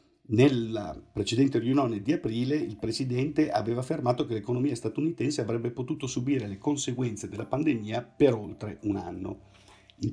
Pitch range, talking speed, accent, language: 105-130 Hz, 140 wpm, native, Italian